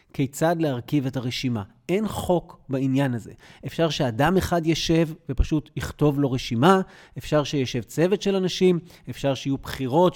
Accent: native